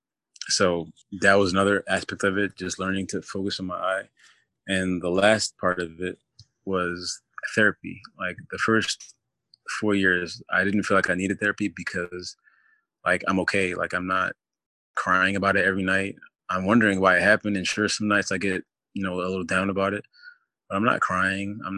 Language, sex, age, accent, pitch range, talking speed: English, male, 20-39, American, 90-100 Hz, 190 wpm